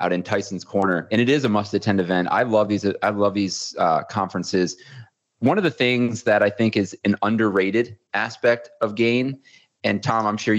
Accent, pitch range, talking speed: American, 95-115 Hz, 200 wpm